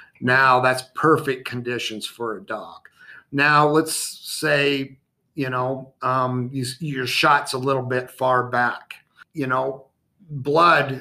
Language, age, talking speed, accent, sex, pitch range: English, 50-69, 125 wpm, American, male, 125-145 Hz